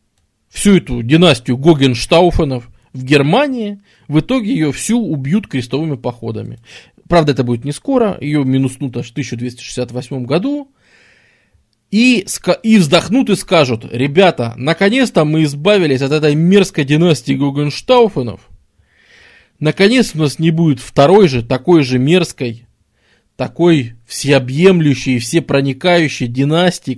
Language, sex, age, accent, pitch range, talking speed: Russian, male, 20-39, native, 125-180 Hz, 115 wpm